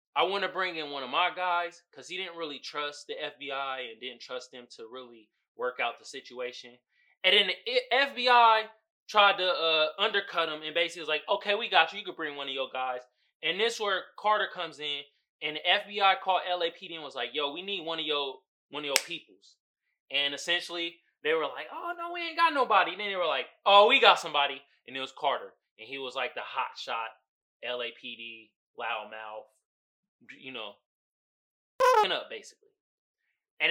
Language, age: English, 20-39